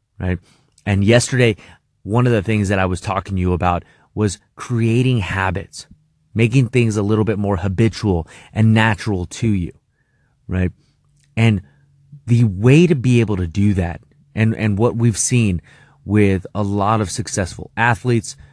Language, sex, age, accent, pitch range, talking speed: English, male, 30-49, American, 95-120 Hz, 160 wpm